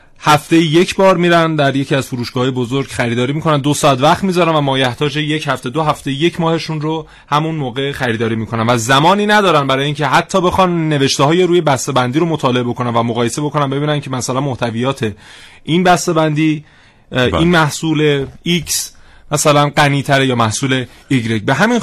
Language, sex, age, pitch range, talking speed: Persian, male, 30-49, 125-155 Hz, 170 wpm